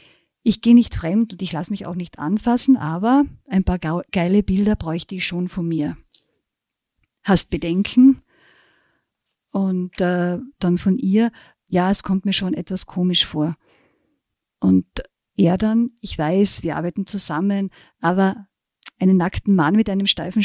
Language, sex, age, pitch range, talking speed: German, female, 50-69, 175-205 Hz, 150 wpm